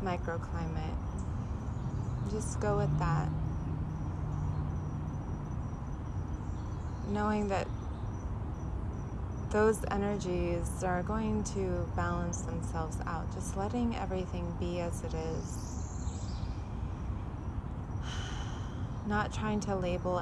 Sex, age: female, 20-39